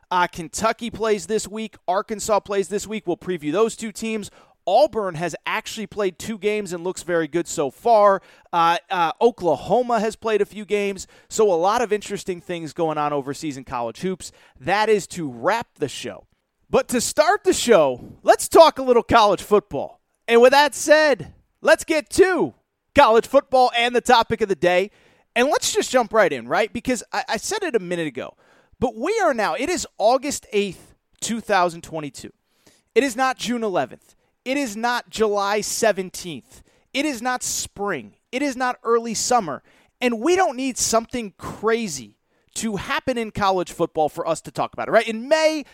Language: English